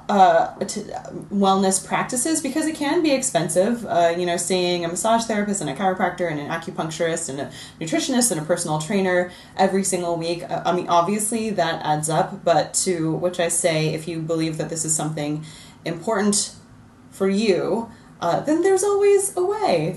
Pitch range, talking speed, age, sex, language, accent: 165-200 Hz, 180 wpm, 20-39, female, English, American